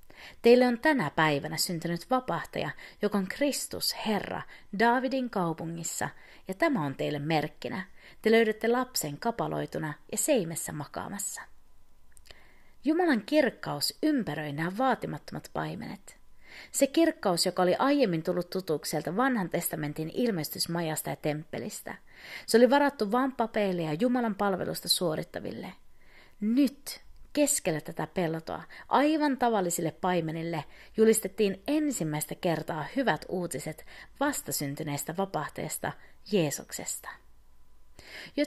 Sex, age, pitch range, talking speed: female, 30-49, 155-250 Hz, 105 wpm